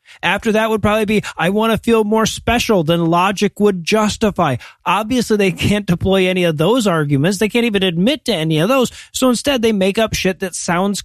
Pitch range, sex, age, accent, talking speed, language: 165-215 Hz, male, 40-59, American, 210 wpm, English